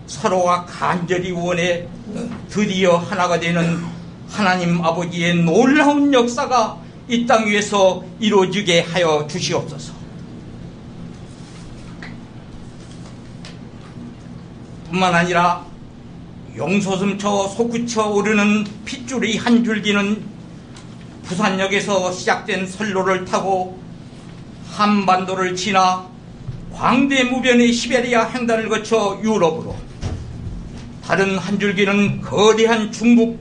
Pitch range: 175-225 Hz